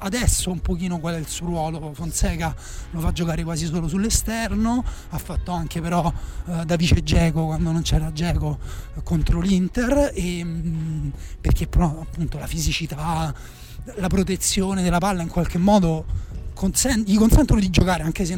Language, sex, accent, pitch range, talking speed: Italian, male, native, 160-190 Hz, 150 wpm